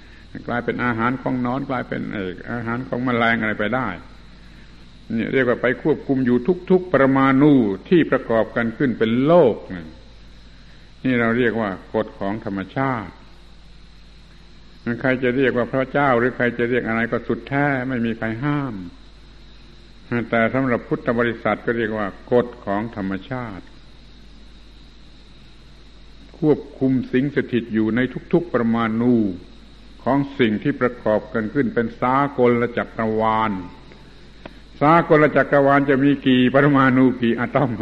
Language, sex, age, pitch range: Thai, male, 70-89, 110-140 Hz